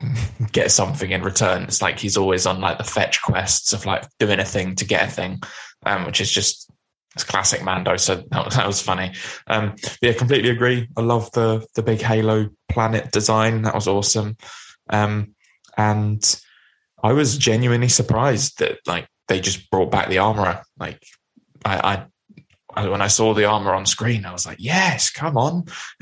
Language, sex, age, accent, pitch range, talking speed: English, male, 10-29, British, 100-120 Hz, 190 wpm